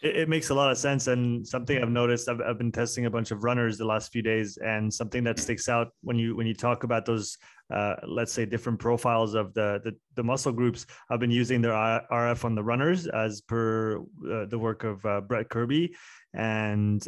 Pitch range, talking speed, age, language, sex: 110-130 Hz, 220 wpm, 20-39, French, male